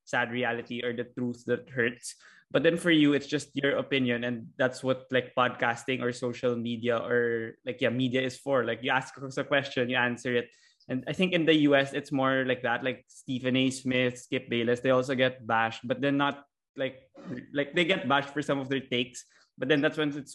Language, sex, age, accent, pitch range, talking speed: Filipino, male, 20-39, native, 125-140 Hz, 220 wpm